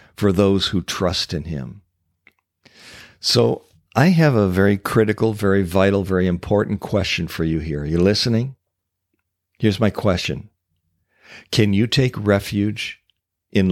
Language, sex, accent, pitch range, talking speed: English, male, American, 95-135 Hz, 135 wpm